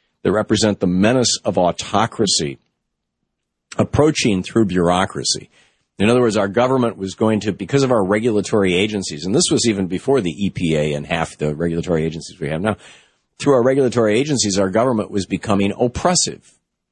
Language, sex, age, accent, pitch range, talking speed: English, male, 50-69, American, 85-115 Hz, 165 wpm